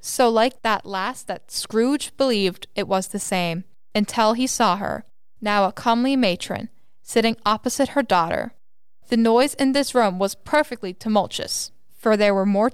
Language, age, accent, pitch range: English, 10-29, American, 195-240 Hz